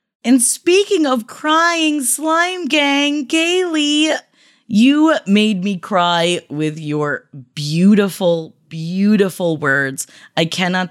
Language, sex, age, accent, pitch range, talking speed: English, female, 20-39, American, 170-245 Hz, 100 wpm